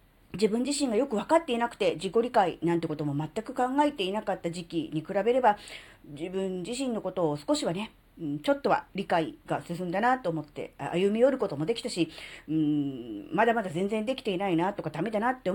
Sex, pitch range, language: female, 165-265 Hz, Japanese